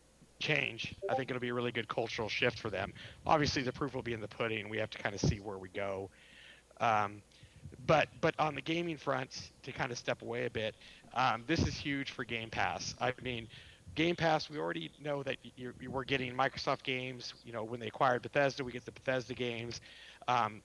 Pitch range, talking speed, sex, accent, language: 115-135 Hz, 220 wpm, male, American, English